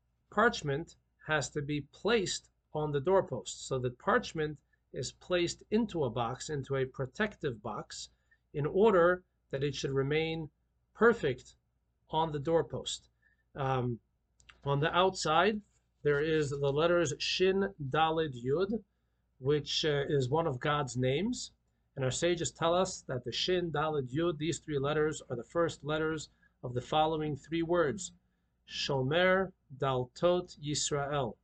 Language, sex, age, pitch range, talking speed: English, male, 40-59, 130-170 Hz, 140 wpm